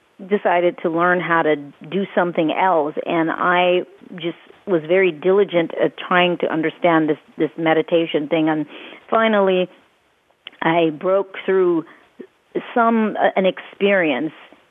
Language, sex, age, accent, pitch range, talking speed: English, female, 40-59, American, 165-200 Hz, 120 wpm